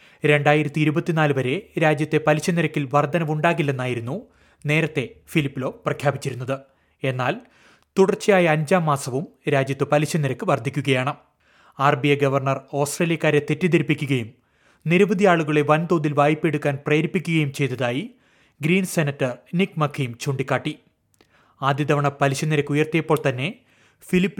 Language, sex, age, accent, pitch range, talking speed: Malayalam, male, 30-49, native, 140-160 Hz, 100 wpm